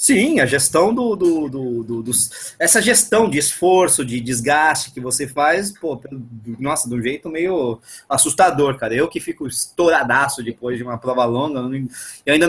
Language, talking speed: Portuguese, 180 wpm